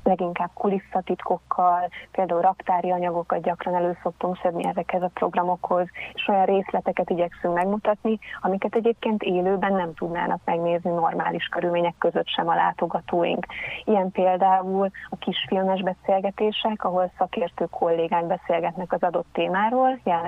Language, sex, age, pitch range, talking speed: Hungarian, female, 30-49, 175-200 Hz, 120 wpm